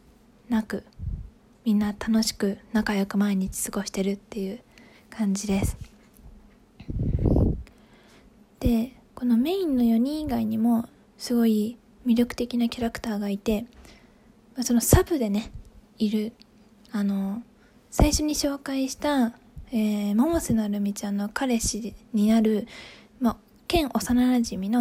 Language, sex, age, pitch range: Japanese, female, 20-39, 215-245 Hz